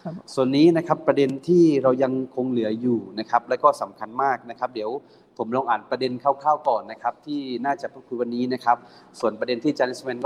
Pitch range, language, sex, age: 120-145 Hz, Thai, male, 30-49